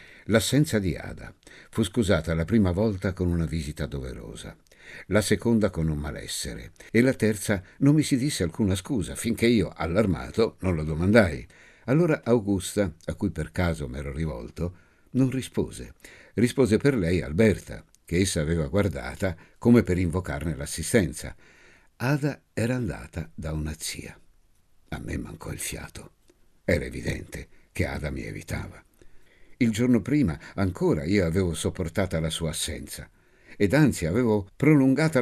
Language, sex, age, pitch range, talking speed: Italian, male, 60-79, 80-115 Hz, 145 wpm